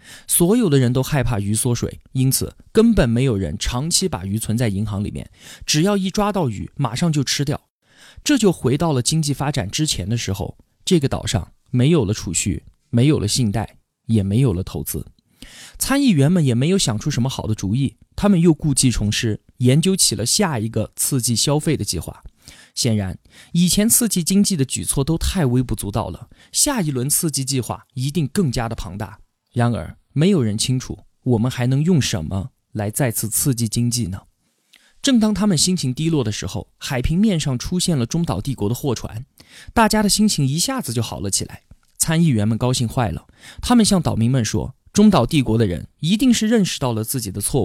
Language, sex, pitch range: Chinese, male, 110-160 Hz